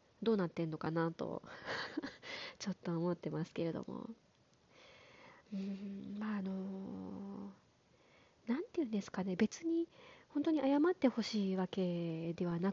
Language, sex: Japanese, female